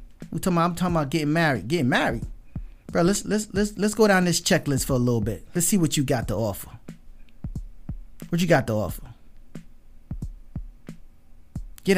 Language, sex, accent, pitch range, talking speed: English, male, American, 140-200 Hz, 175 wpm